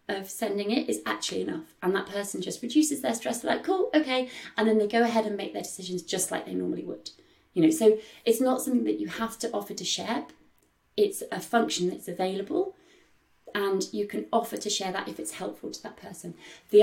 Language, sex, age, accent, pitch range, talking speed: English, female, 30-49, British, 195-245 Hz, 220 wpm